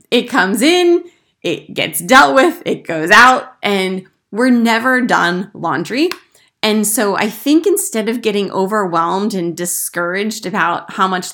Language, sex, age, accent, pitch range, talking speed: English, female, 20-39, American, 170-230 Hz, 150 wpm